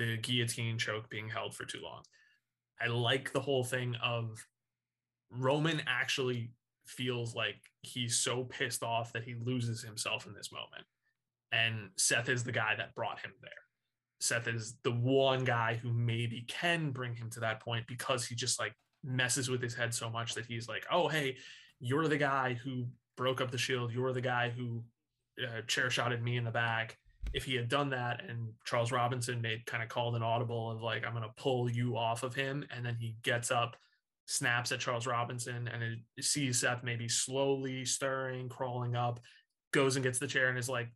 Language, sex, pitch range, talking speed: English, male, 115-130 Hz, 195 wpm